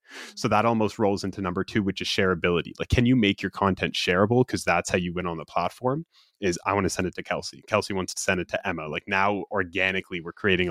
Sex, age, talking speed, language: male, 20-39, 250 wpm, English